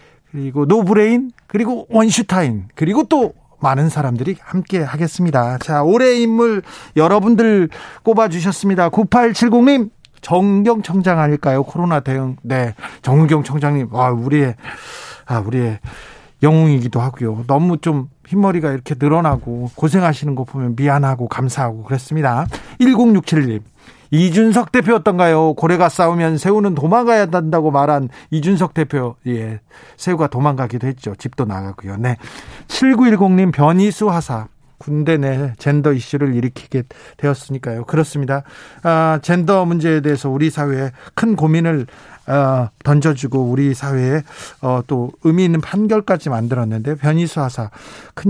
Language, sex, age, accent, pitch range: Korean, male, 40-59, native, 135-190 Hz